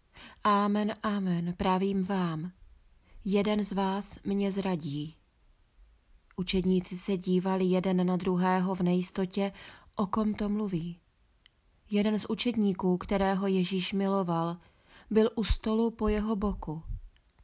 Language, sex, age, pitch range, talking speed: Czech, female, 30-49, 175-205 Hz, 115 wpm